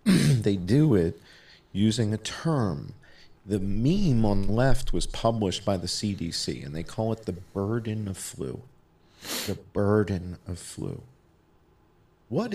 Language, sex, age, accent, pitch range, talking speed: English, male, 40-59, American, 90-125 Hz, 140 wpm